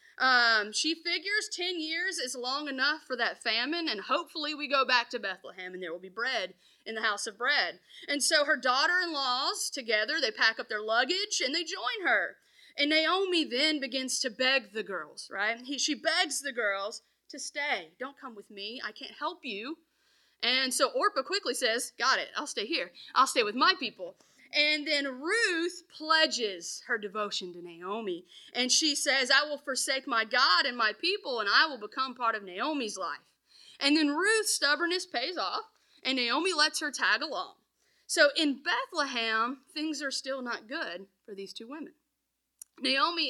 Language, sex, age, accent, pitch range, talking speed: English, female, 30-49, American, 240-320 Hz, 185 wpm